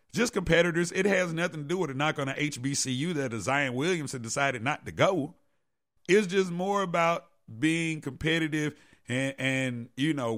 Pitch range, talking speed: 135-175 Hz, 180 wpm